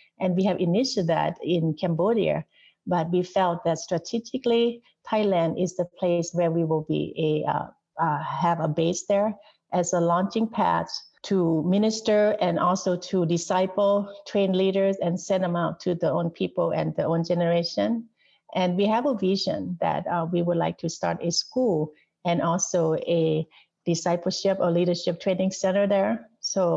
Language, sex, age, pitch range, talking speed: English, female, 50-69, 165-190 Hz, 170 wpm